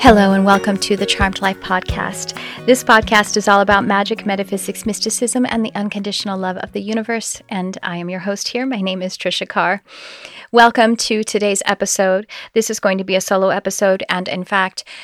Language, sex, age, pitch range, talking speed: English, female, 30-49, 175-210 Hz, 195 wpm